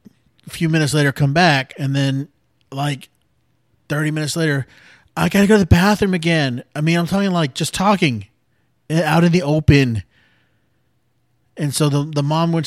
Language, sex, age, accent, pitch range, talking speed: English, male, 30-49, American, 130-160 Hz, 170 wpm